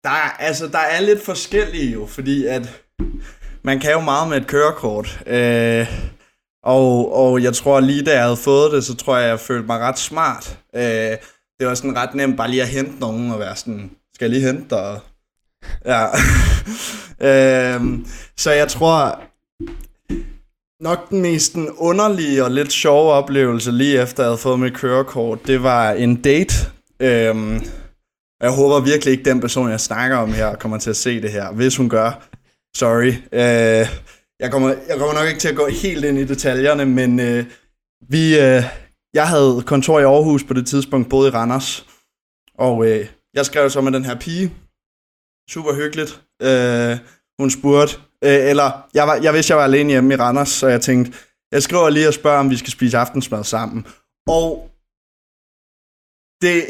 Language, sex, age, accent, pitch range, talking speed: Danish, male, 20-39, native, 120-145 Hz, 180 wpm